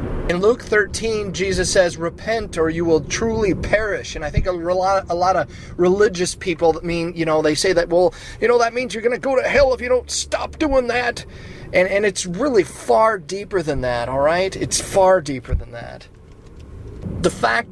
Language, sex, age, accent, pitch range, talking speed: English, male, 30-49, American, 130-190 Hz, 210 wpm